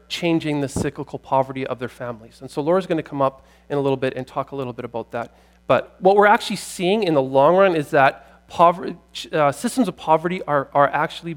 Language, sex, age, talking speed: English, male, 40-59, 230 wpm